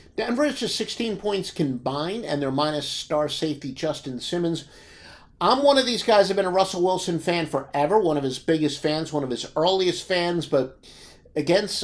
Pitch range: 145-185 Hz